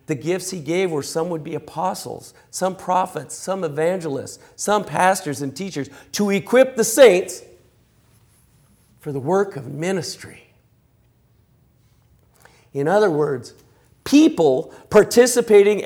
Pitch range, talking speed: 130-185 Hz, 115 wpm